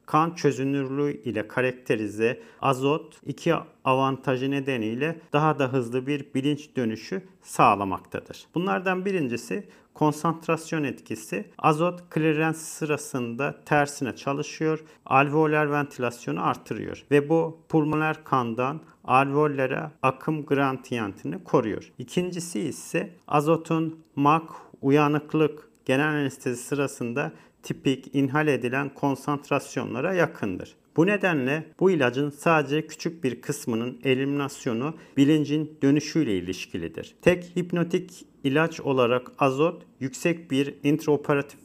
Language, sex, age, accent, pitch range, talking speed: Turkish, male, 50-69, native, 135-155 Hz, 100 wpm